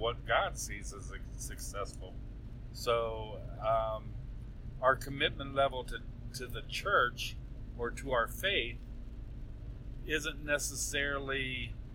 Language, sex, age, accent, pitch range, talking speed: English, male, 40-59, American, 115-125 Hz, 100 wpm